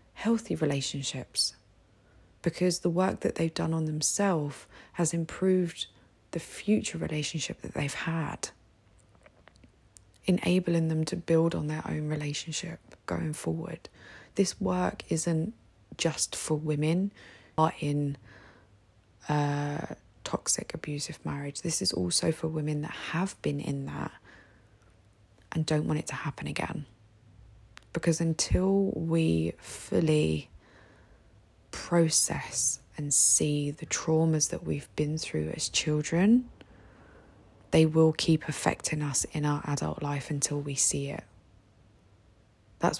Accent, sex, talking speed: British, female, 120 wpm